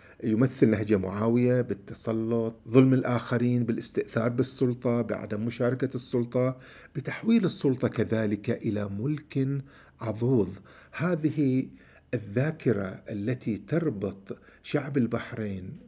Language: Arabic